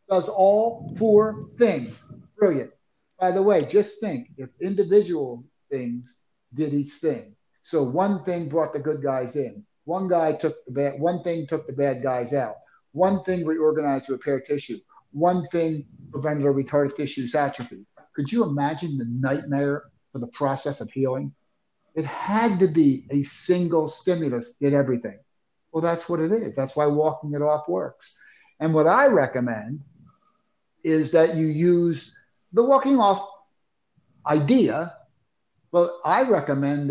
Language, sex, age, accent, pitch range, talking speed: English, male, 50-69, American, 145-185 Hz, 150 wpm